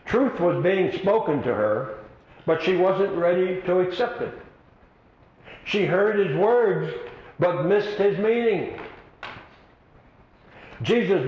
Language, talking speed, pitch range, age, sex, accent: Russian, 115 wpm, 150-200 Hz, 60-79, male, American